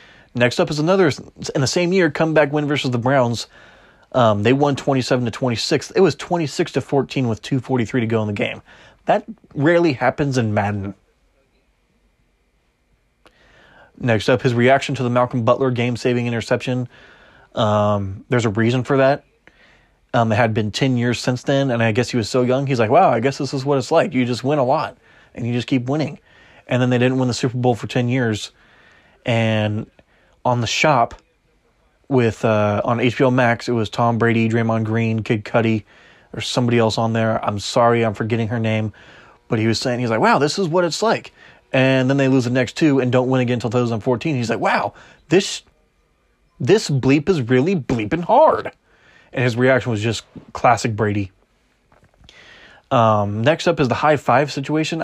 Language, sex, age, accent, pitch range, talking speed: English, male, 20-39, American, 115-140 Hz, 190 wpm